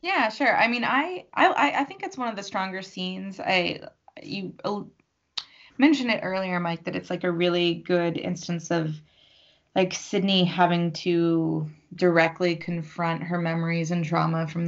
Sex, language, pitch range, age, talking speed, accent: female, English, 160-195 Hz, 20-39, 165 wpm, American